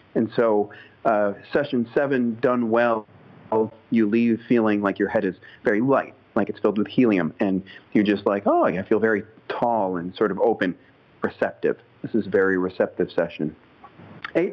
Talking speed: 175 wpm